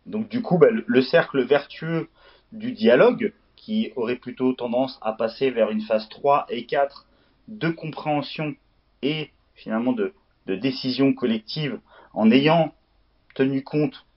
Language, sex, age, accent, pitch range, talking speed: French, male, 30-49, French, 120-180 Hz, 140 wpm